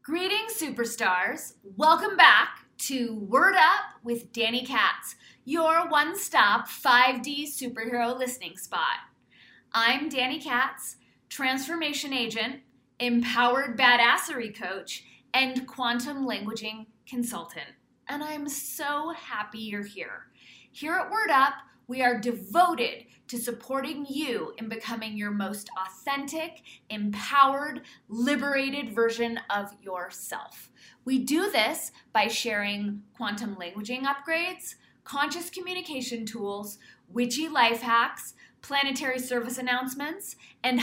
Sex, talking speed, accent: female, 105 wpm, American